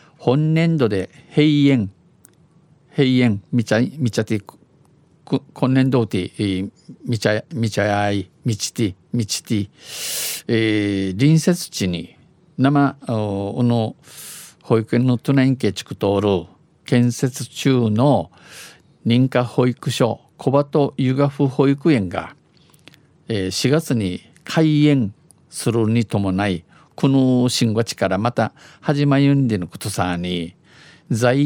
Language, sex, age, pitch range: Japanese, male, 50-69, 105-135 Hz